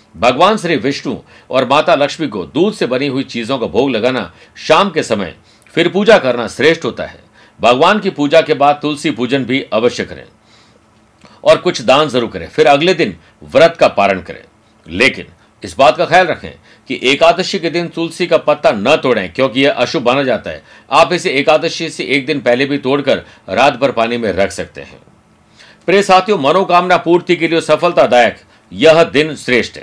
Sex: male